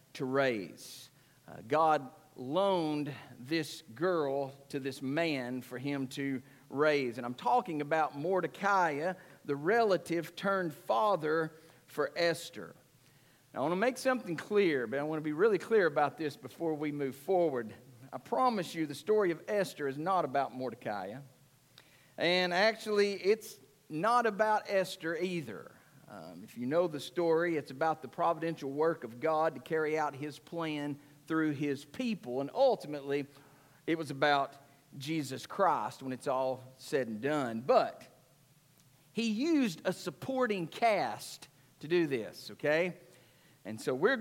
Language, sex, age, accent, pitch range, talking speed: English, male, 50-69, American, 140-185 Hz, 150 wpm